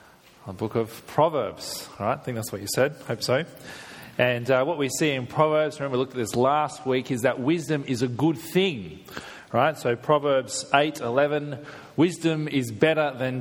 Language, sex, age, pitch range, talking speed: English, male, 30-49, 115-150 Hz, 205 wpm